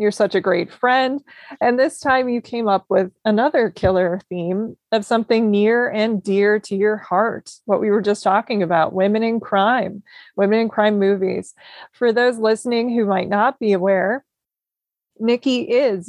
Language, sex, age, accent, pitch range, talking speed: English, female, 20-39, American, 195-235 Hz, 170 wpm